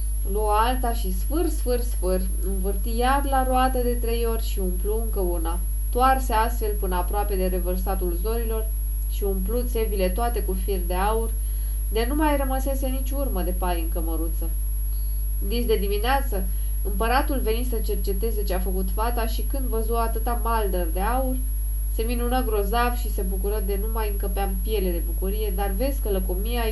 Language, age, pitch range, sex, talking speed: English, 20-39, 185-235 Hz, female, 175 wpm